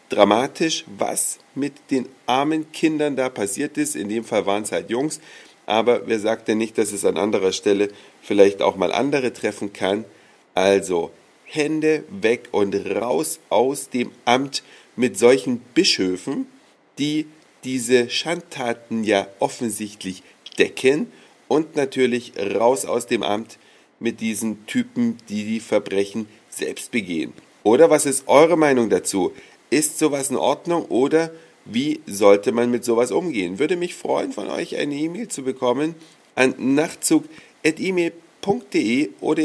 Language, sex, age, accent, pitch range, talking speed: German, male, 40-59, German, 105-155 Hz, 140 wpm